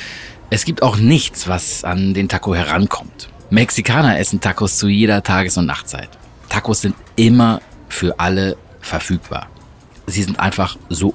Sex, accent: male, German